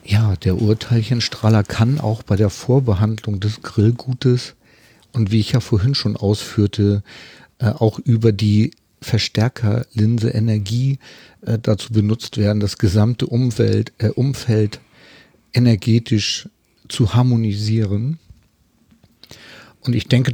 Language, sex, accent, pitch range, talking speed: German, male, German, 105-125 Hz, 110 wpm